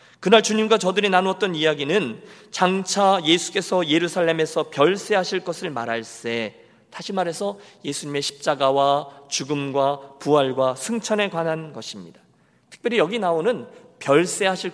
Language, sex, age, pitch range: Korean, male, 40-59, 155-230 Hz